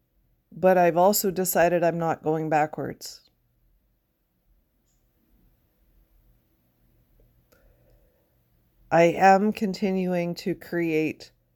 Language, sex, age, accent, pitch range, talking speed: English, female, 50-69, American, 125-185 Hz, 65 wpm